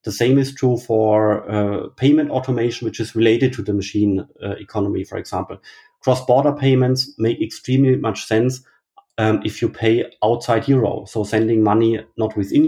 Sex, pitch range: male, 105-130 Hz